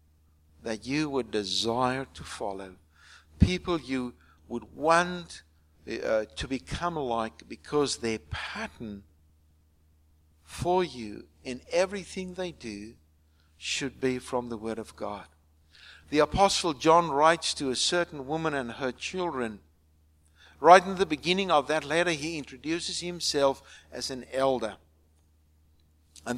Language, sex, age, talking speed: English, male, 60-79, 125 wpm